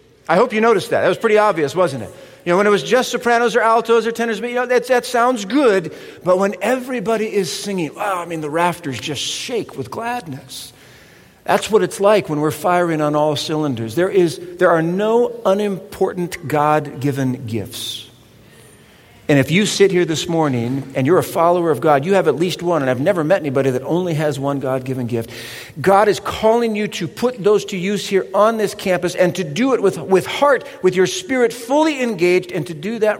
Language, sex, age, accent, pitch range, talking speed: English, male, 50-69, American, 140-205 Hz, 215 wpm